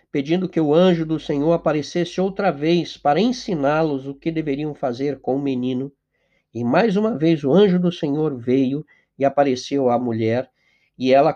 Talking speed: 175 wpm